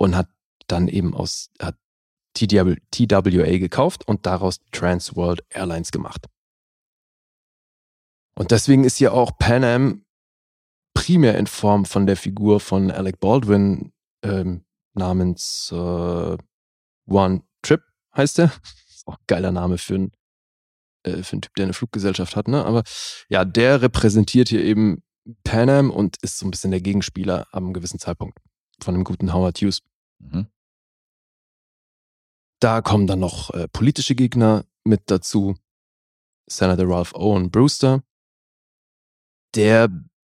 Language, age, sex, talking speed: German, 30-49, male, 135 wpm